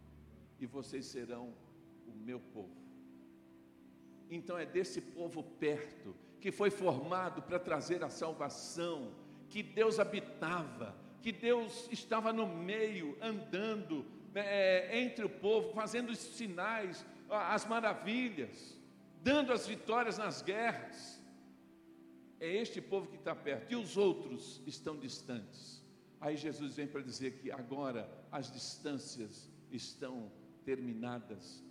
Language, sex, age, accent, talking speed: Portuguese, male, 60-79, Brazilian, 120 wpm